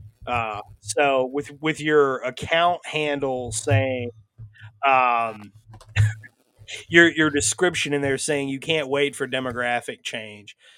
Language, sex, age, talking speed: English, male, 30-49, 115 wpm